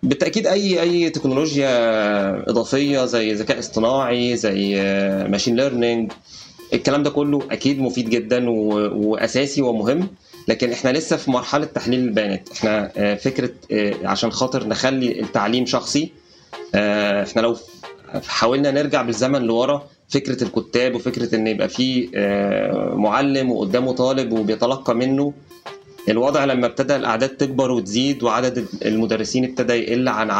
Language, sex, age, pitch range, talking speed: Arabic, male, 20-39, 115-140 Hz, 120 wpm